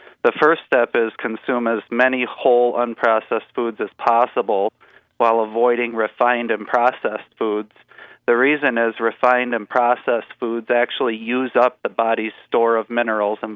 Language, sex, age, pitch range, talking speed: English, male, 40-59, 110-125 Hz, 150 wpm